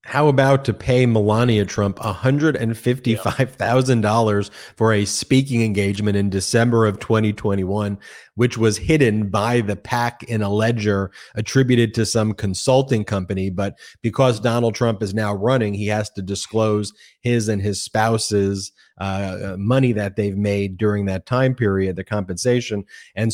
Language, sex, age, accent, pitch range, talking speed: English, male, 30-49, American, 100-125 Hz, 145 wpm